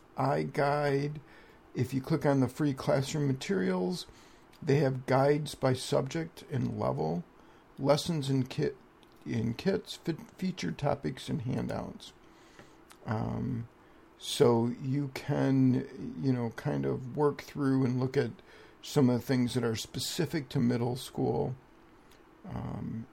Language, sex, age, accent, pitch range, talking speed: English, male, 50-69, American, 115-140 Hz, 130 wpm